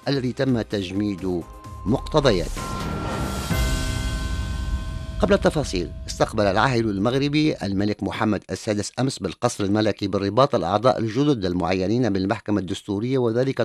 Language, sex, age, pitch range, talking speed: English, male, 50-69, 95-125 Hz, 95 wpm